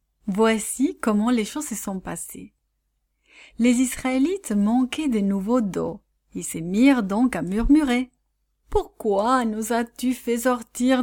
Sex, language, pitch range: female, English, 205-275 Hz